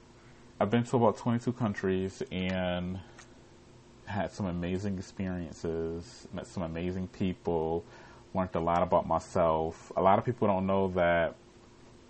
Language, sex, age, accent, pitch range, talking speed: English, male, 30-49, American, 85-120 Hz, 135 wpm